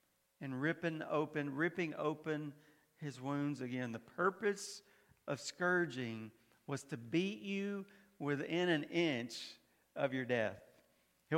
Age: 50-69